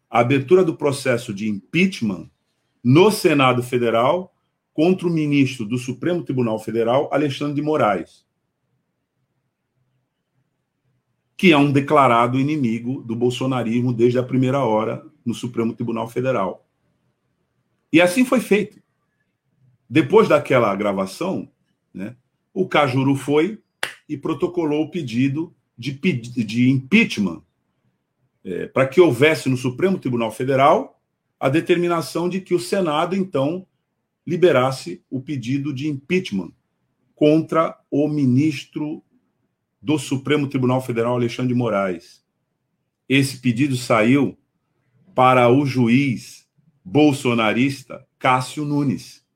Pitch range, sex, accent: 125-155 Hz, male, Brazilian